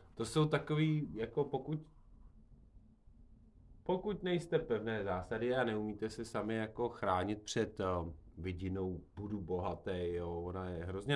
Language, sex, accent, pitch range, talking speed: Czech, male, native, 95-115 Hz, 130 wpm